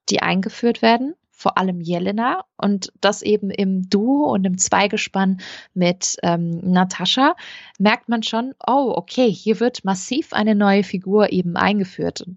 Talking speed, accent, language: 145 wpm, German, German